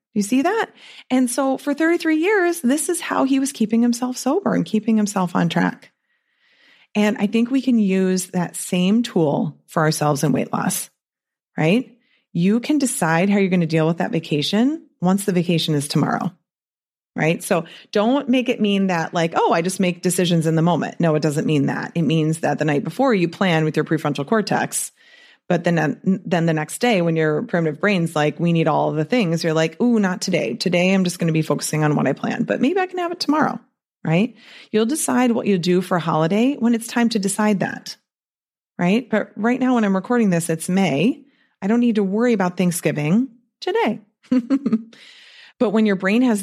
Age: 30-49